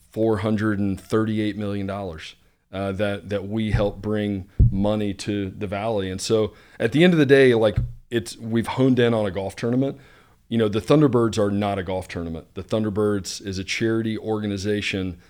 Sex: male